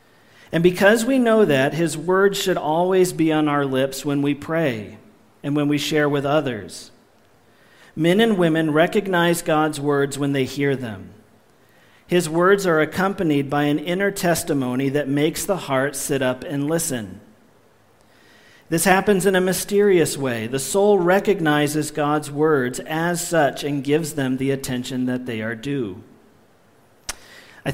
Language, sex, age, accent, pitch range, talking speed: English, male, 40-59, American, 140-180 Hz, 155 wpm